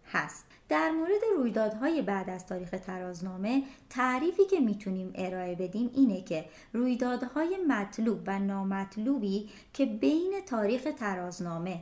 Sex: male